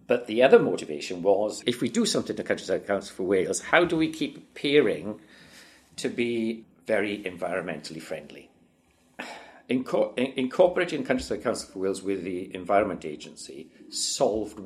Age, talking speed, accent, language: 50-69, 140 wpm, British, English